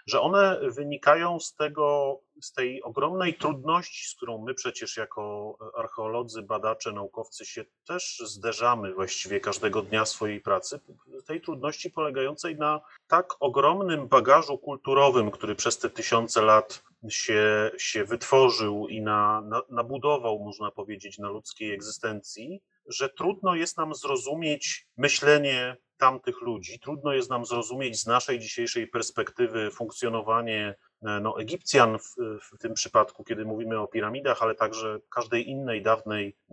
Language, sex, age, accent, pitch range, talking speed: Polish, male, 30-49, native, 110-150 Hz, 135 wpm